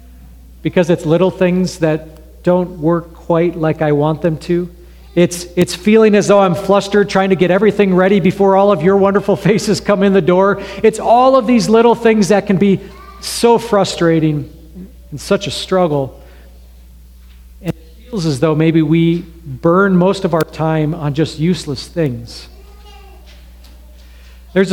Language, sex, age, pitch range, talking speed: English, male, 40-59, 145-185 Hz, 165 wpm